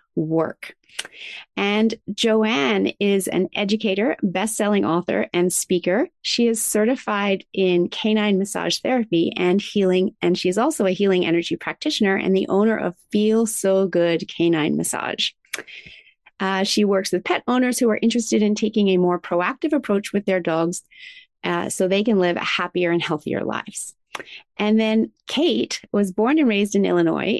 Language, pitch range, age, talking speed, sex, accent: English, 185-225 Hz, 30-49, 155 wpm, female, American